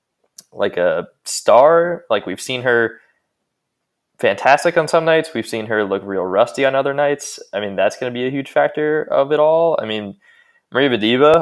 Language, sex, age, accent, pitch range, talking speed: English, male, 20-39, American, 110-155 Hz, 190 wpm